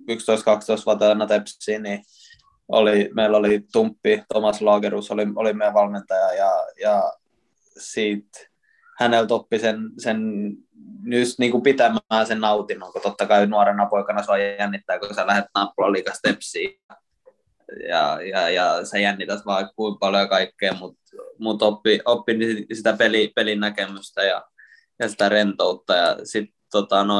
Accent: native